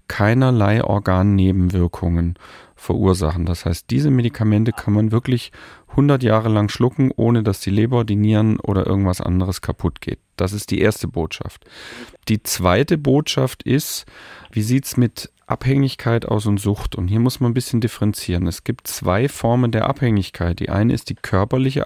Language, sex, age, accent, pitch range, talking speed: German, male, 40-59, German, 100-125 Hz, 165 wpm